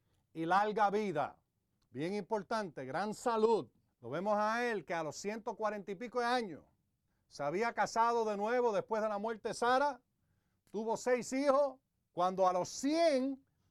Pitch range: 180-255 Hz